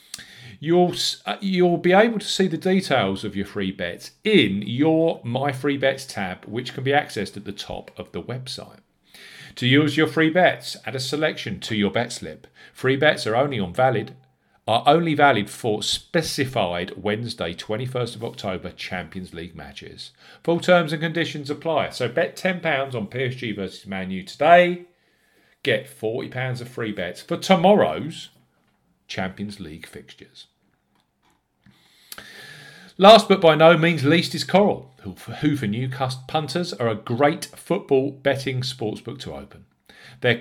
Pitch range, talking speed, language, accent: 105-155 Hz, 155 wpm, English, British